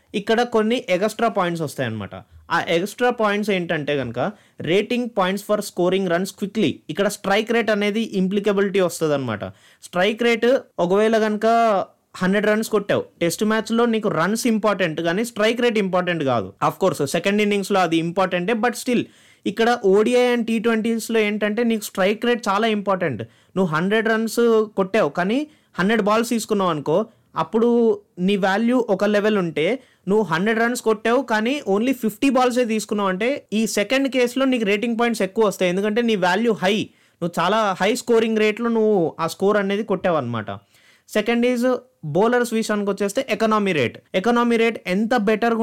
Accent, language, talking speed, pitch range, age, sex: native, Telugu, 155 wpm, 185-230 Hz, 20-39, male